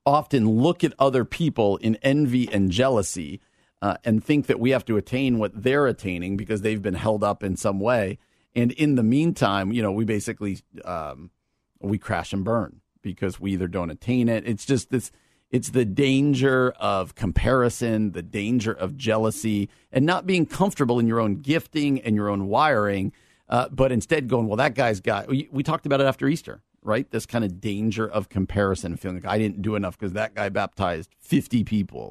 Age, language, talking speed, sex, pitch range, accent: 50-69, English, 195 wpm, male, 100-125 Hz, American